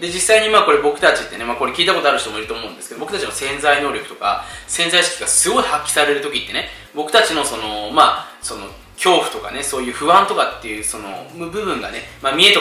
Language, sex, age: Japanese, male, 20-39